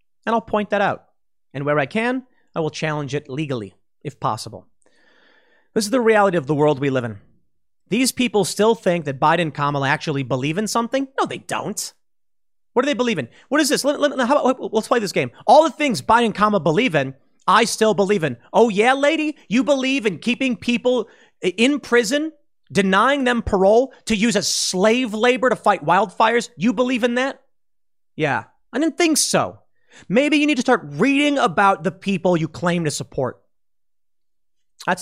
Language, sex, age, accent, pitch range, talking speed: English, male, 30-49, American, 145-245 Hz, 185 wpm